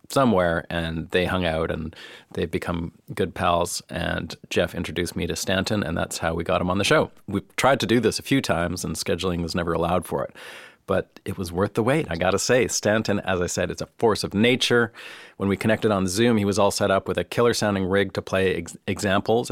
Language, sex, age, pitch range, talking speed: English, male, 40-59, 85-100 Hz, 235 wpm